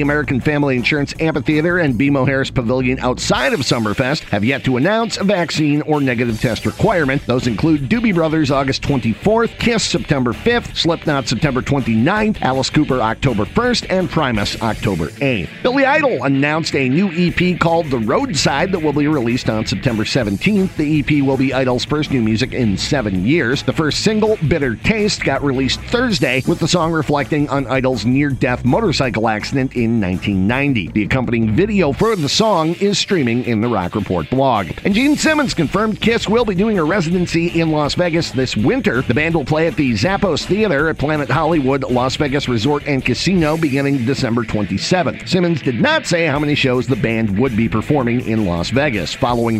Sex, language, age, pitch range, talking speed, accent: male, English, 50-69, 125-175 Hz, 185 wpm, American